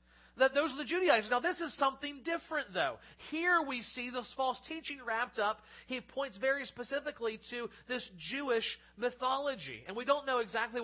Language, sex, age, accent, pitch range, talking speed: English, male, 40-59, American, 195-255 Hz, 175 wpm